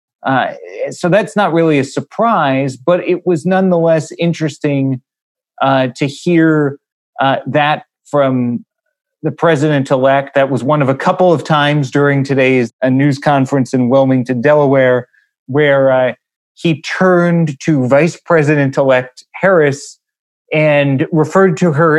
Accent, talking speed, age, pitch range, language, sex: American, 130 wpm, 30-49, 130-155 Hz, English, male